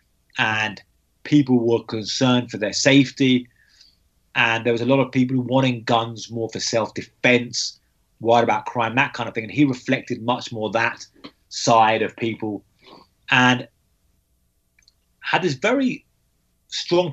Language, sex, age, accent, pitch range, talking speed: English, male, 30-49, British, 115-135 Hz, 140 wpm